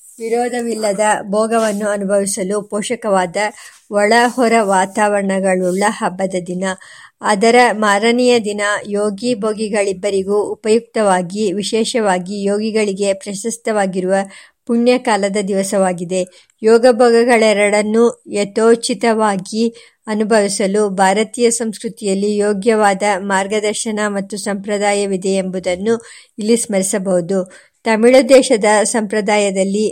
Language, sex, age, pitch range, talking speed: Kannada, male, 50-69, 195-225 Hz, 70 wpm